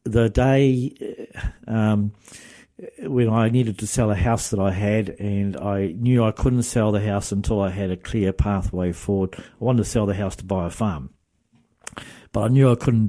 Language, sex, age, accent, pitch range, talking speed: English, male, 60-79, Australian, 95-115 Hz, 195 wpm